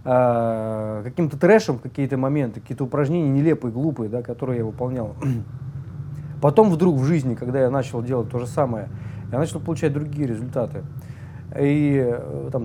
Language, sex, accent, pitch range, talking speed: Russian, male, native, 115-145 Hz, 155 wpm